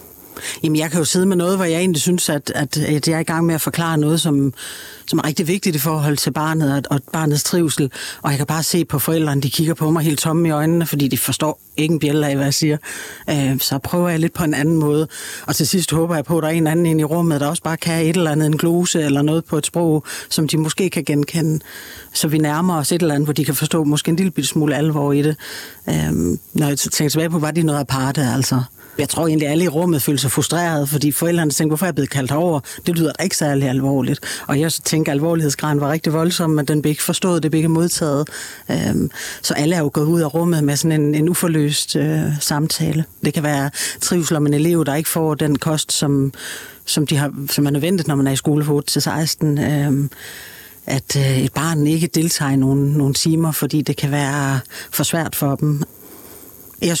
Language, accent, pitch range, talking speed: Danish, native, 145-165 Hz, 235 wpm